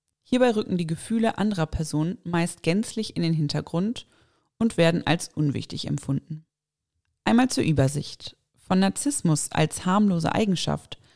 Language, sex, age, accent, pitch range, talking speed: German, female, 30-49, German, 155-195 Hz, 130 wpm